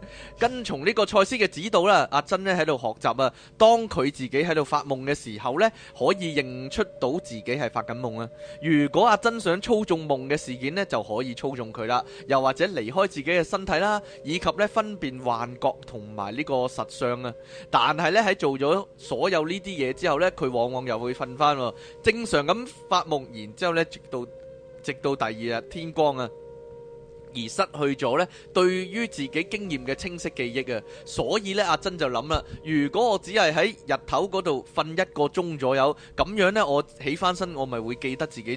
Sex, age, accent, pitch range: male, 20-39, native, 130-190 Hz